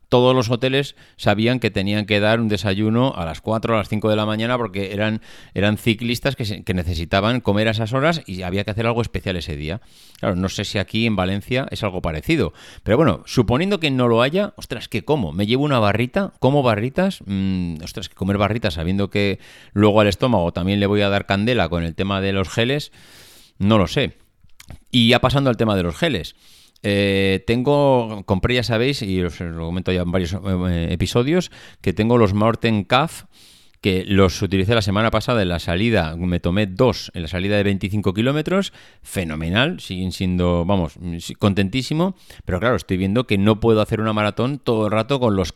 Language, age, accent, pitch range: Spanish, 30-49, Spanish, 95-115 Hz